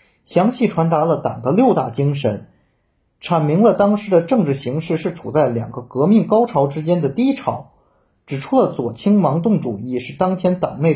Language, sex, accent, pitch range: Chinese, male, native, 135-205 Hz